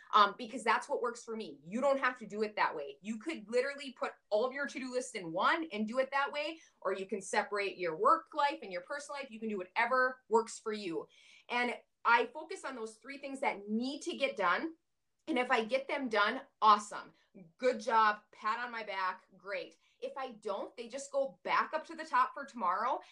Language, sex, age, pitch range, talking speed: English, female, 20-39, 205-270 Hz, 230 wpm